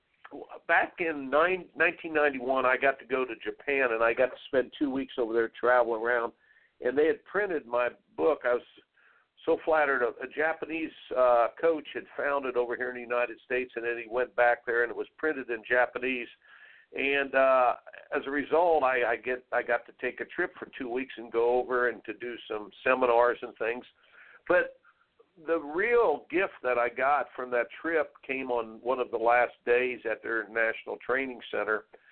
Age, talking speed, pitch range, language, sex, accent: 60-79, 195 wpm, 120-160 Hz, English, male, American